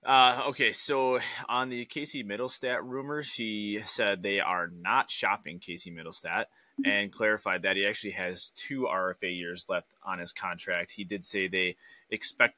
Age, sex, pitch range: 20-39, male, 95-110 Hz